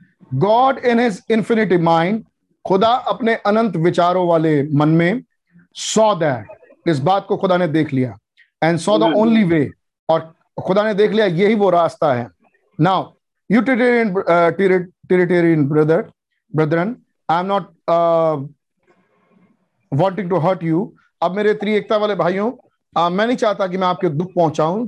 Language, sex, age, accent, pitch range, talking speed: Hindi, male, 50-69, native, 165-210 Hz, 140 wpm